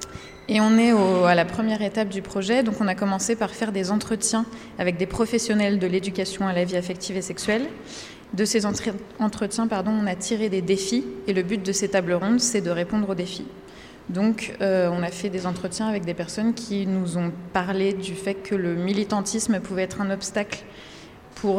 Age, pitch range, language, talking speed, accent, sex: 20-39, 180-215 Hz, French, 205 wpm, French, female